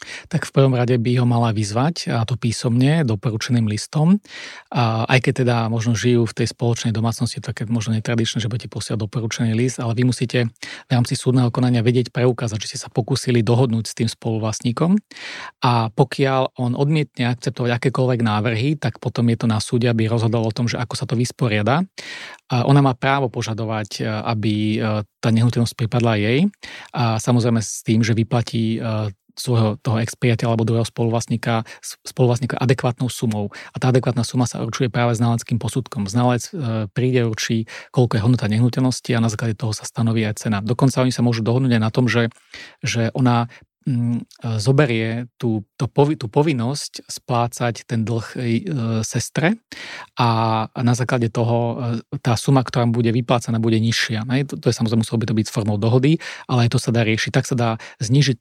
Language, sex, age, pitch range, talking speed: Slovak, male, 30-49, 115-130 Hz, 175 wpm